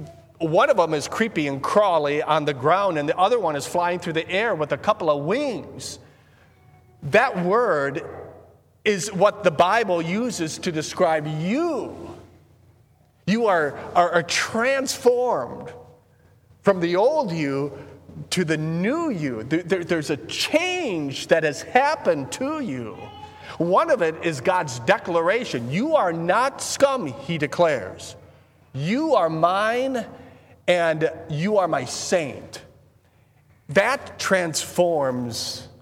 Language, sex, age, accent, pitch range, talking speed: English, male, 40-59, American, 145-200 Hz, 130 wpm